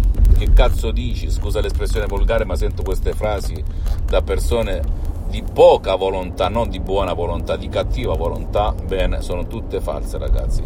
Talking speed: 150 wpm